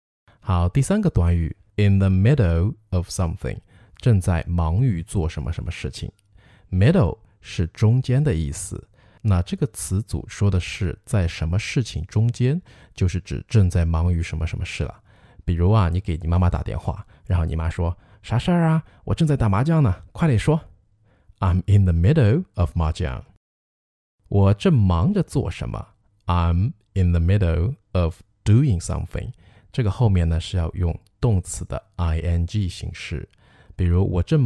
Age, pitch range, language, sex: 20-39, 90-110 Hz, Chinese, male